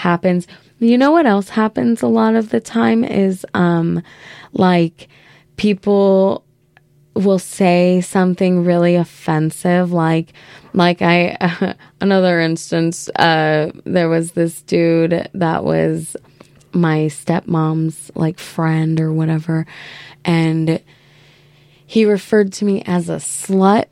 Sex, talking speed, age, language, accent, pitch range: female, 120 wpm, 20-39, English, American, 160-205 Hz